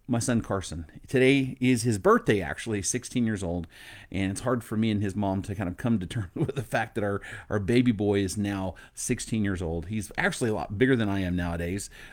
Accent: American